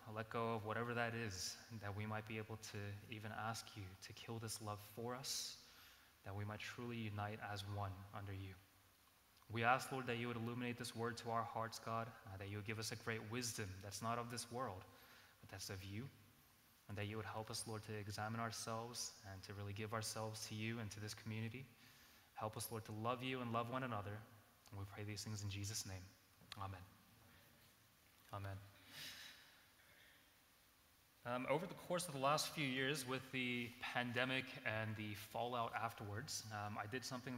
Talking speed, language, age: 195 wpm, English, 20-39